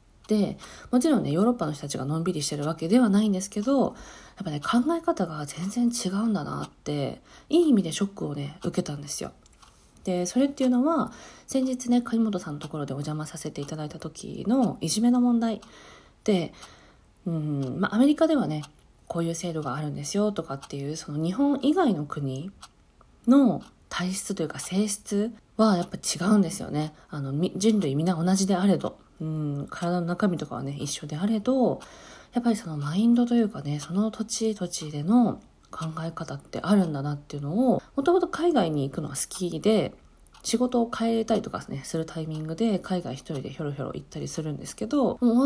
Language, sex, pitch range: Japanese, female, 150-225 Hz